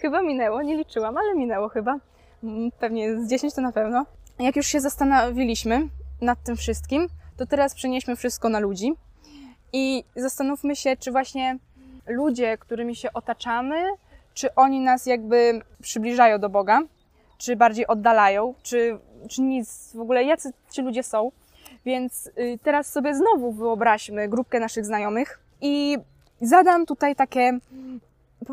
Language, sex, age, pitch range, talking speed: Polish, female, 20-39, 230-275 Hz, 140 wpm